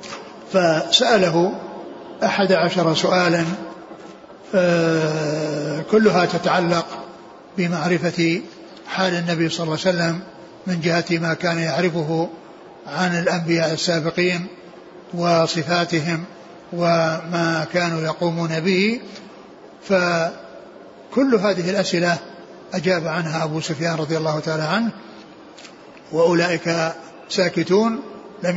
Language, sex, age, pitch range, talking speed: Arabic, male, 60-79, 170-190 Hz, 85 wpm